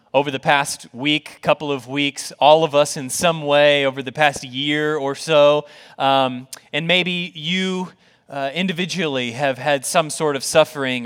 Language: English